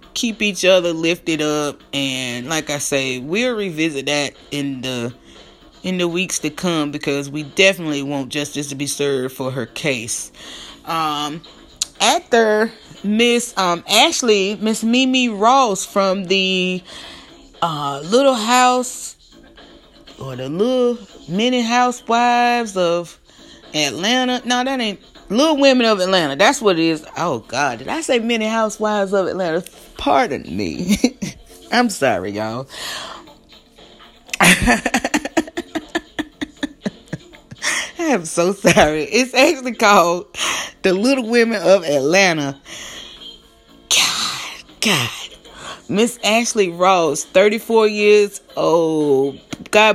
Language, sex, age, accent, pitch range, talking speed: English, female, 30-49, American, 150-235 Hz, 115 wpm